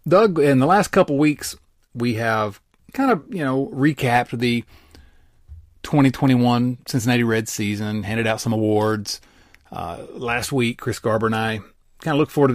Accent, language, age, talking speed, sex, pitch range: American, English, 30-49, 170 wpm, male, 110-140 Hz